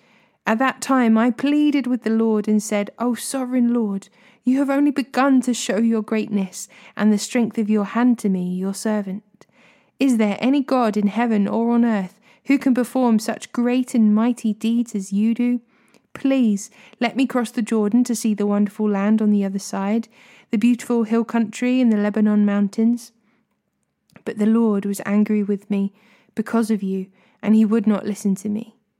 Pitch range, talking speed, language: 205-240 Hz, 190 wpm, English